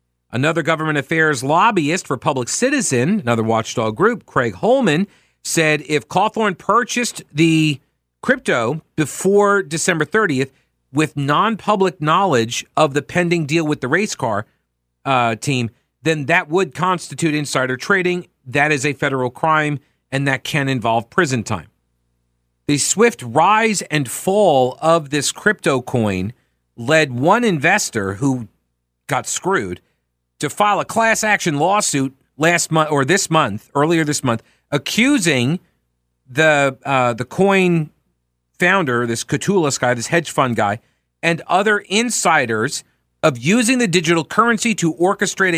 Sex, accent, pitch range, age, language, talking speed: male, American, 120-185 Hz, 40-59, English, 135 wpm